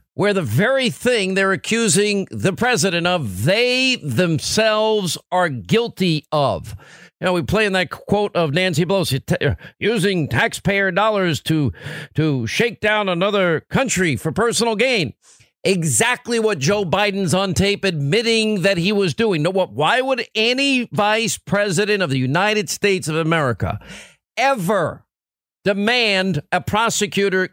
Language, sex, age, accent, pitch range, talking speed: English, male, 50-69, American, 145-205 Hz, 140 wpm